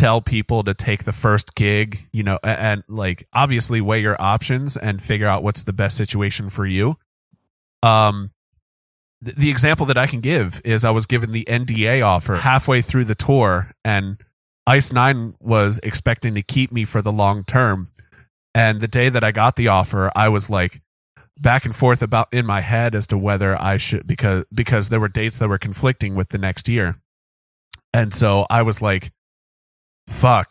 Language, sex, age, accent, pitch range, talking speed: English, male, 30-49, American, 95-120 Hz, 190 wpm